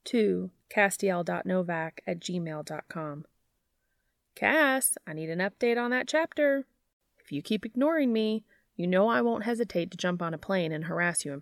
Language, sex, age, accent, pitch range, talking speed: English, female, 20-39, American, 155-205 Hz, 165 wpm